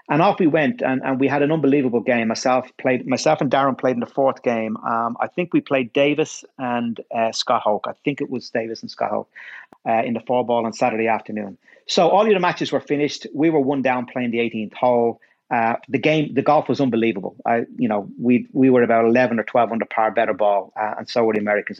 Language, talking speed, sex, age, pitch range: English, 245 wpm, male, 40-59, 115-135 Hz